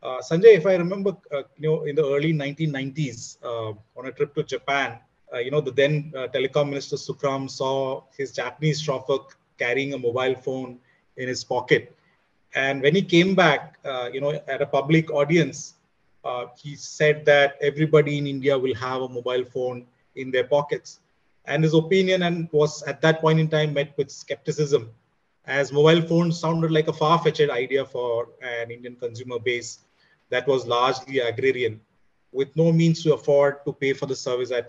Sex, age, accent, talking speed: male, 30-49, Indian, 180 wpm